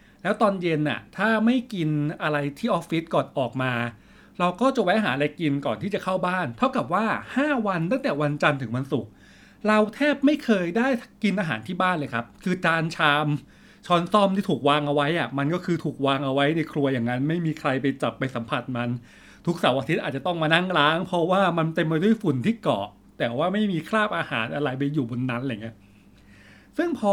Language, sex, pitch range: English, male, 140-195 Hz